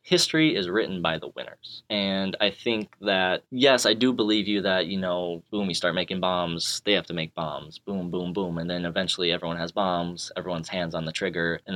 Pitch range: 90-115 Hz